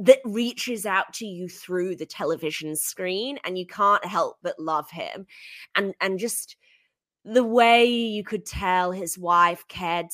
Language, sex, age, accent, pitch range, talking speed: English, female, 20-39, British, 165-210 Hz, 160 wpm